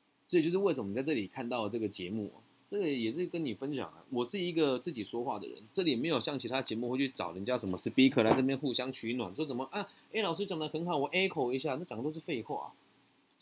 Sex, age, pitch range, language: male, 20-39, 110-160 Hz, Chinese